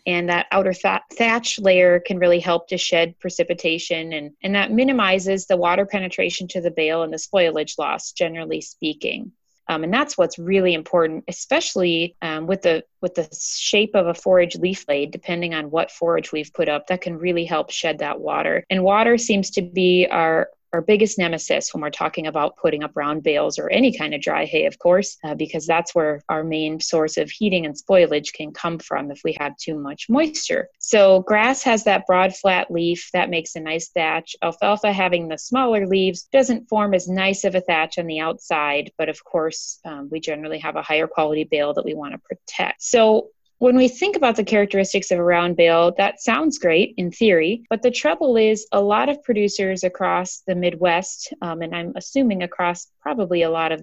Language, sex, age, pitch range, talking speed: English, female, 30-49, 165-210 Hz, 205 wpm